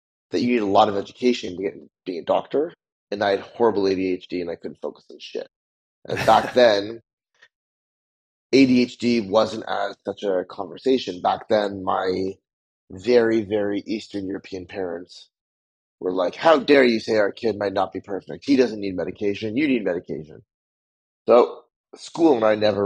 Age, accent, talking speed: 30-49, American, 170 wpm